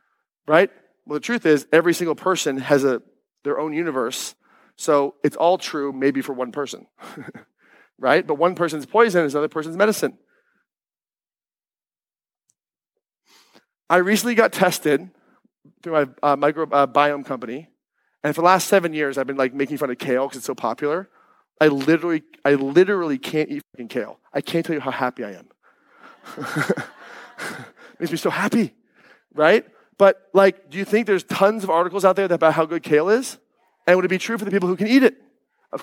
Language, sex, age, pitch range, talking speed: English, male, 40-59, 155-225 Hz, 180 wpm